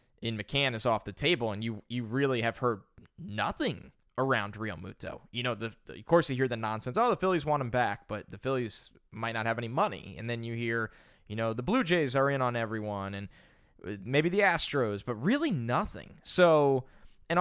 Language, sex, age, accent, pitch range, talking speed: English, male, 10-29, American, 115-145 Hz, 215 wpm